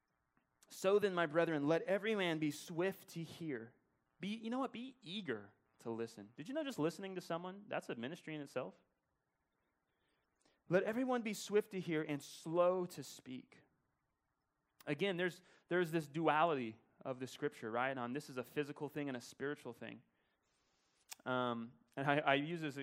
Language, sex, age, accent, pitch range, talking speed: English, male, 30-49, American, 125-195 Hz, 175 wpm